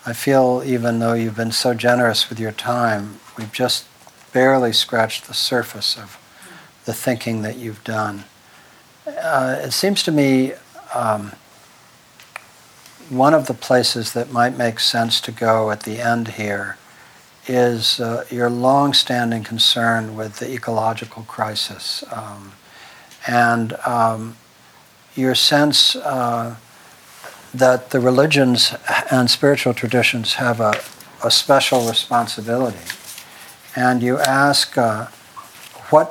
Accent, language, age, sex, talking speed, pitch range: American, English, 60-79, male, 125 wpm, 115-130 Hz